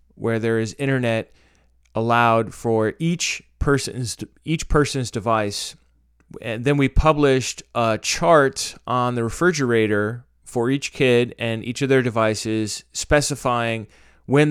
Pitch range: 110-135 Hz